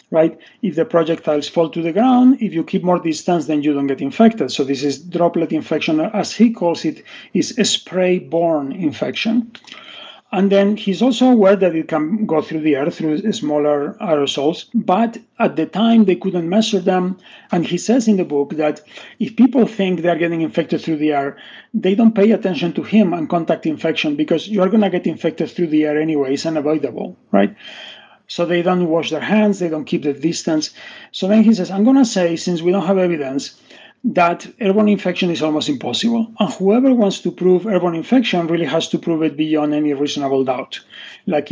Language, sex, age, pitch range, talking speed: English, male, 40-59, 160-215 Hz, 200 wpm